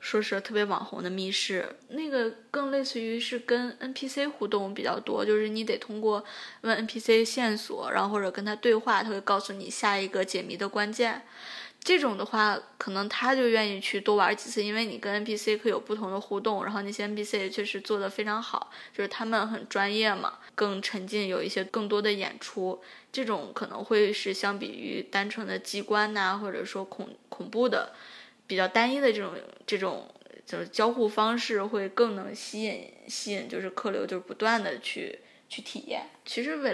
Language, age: Chinese, 20-39